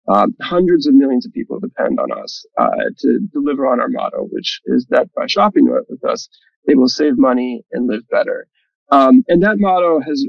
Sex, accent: male, American